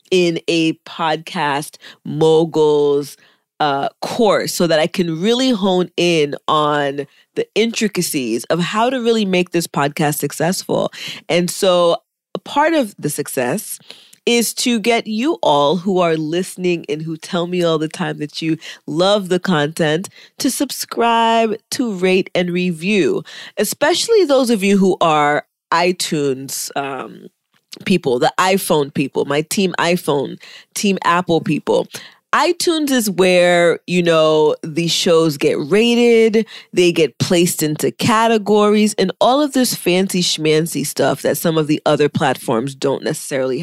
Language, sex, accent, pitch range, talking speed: English, female, American, 155-225 Hz, 145 wpm